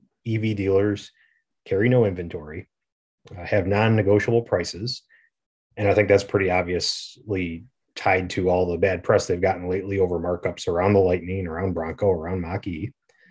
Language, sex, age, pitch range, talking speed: English, male, 30-49, 95-120 Hz, 150 wpm